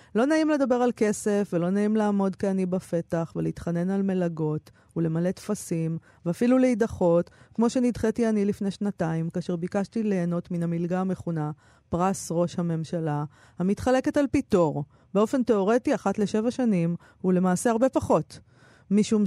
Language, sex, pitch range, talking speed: Hebrew, female, 175-220 Hz, 135 wpm